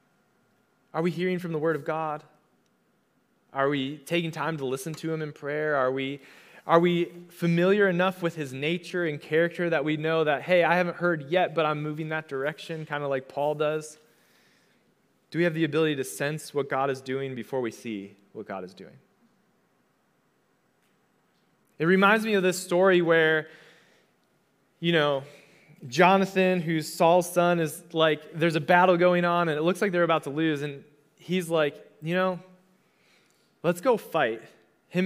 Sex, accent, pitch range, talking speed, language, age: male, American, 150-180 Hz, 175 wpm, English, 20-39